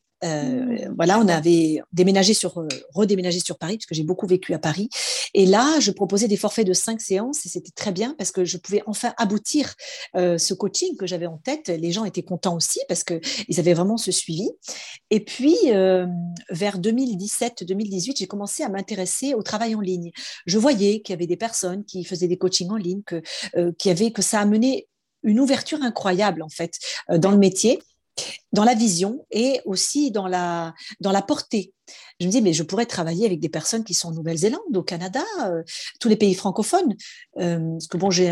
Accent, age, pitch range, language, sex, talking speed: French, 40-59, 180-225 Hz, French, female, 205 wpm